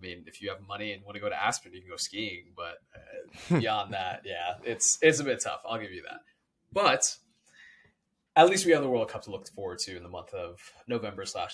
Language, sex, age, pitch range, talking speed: English, male, 20-39, 110-170 Hz, 250 wpm